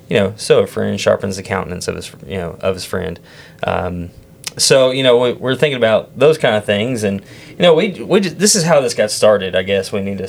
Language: English